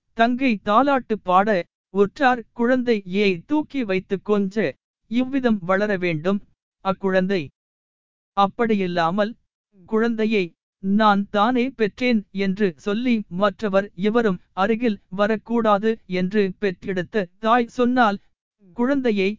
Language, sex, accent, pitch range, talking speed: Tamil, male, native, 195-245 Hz, 85 wpm